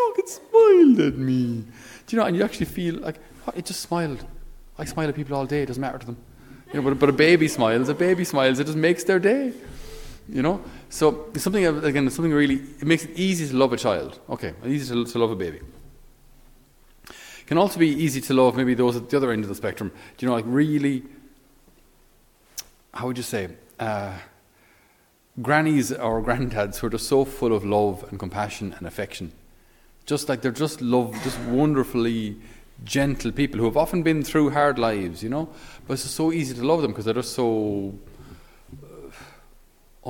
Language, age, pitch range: English, 30-49, 115-150 Hz